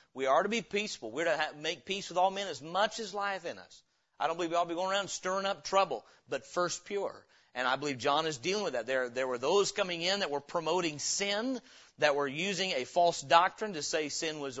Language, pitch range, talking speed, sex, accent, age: English, 155-205 Hz, 255 wpm, male, American, 40-59